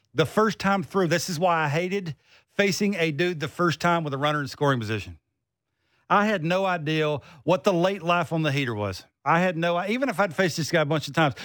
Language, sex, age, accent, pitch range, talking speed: English, male, 50-69, American, 145-200 Hz, 240 wpm